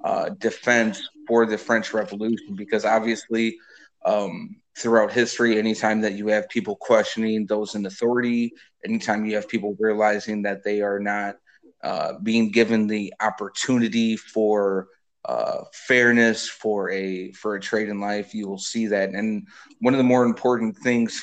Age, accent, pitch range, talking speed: 30-49, American, 105-120 Hz, 155 wpm